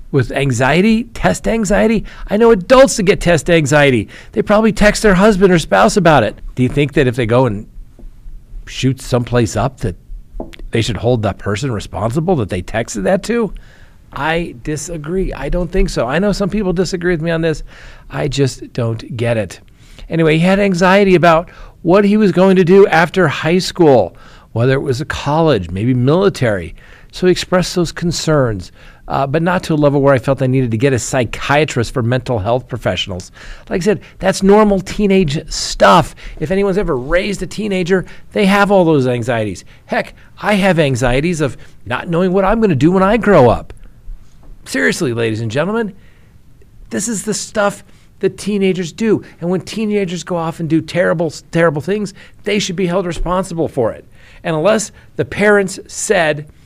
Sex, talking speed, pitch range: male, 185 wpm, 130-190 Hz